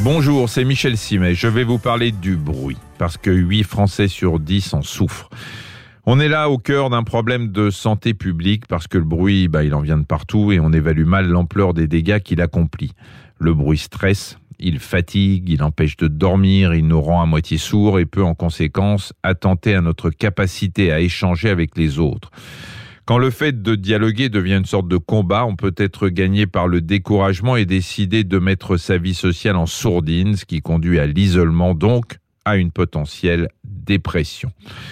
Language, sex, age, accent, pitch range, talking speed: French, male, 40-59, French, 85-110 Hz, 190 wpm